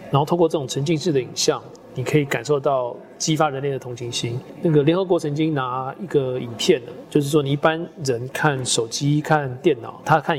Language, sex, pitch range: Chinese, male, 130-165 Hz